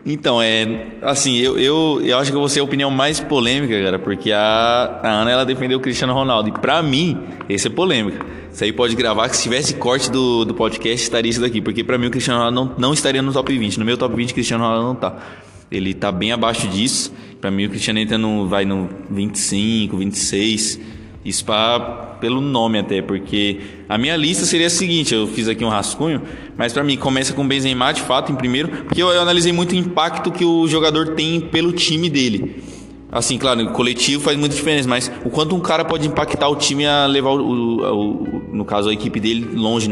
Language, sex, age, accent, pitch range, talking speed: Portuguese, male, 20-39, Brazilian, 110-140 Hz, 225 wpm